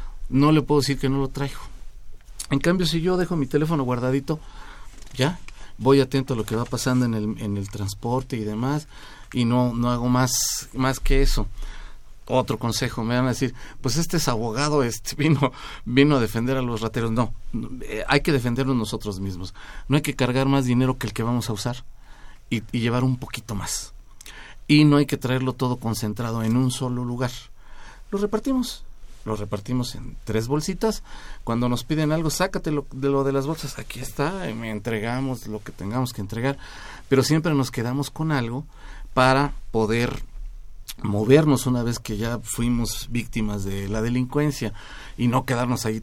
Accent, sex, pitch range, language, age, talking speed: Mexican, male, 115-140 Hz, Spanish, 40-59, 185 wpm